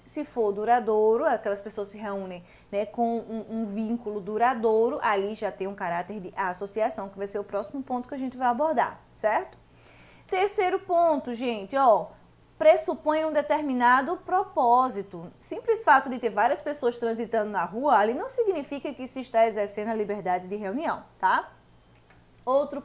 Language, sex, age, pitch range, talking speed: Portuguese, female, 20-39, 220-290 Hz, 165 wpm